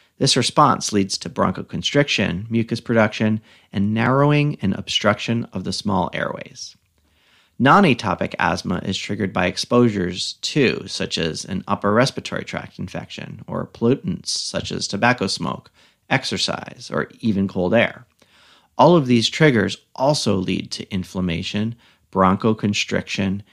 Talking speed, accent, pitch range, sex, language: 125 wpm, American, 95-120 Hz, male, English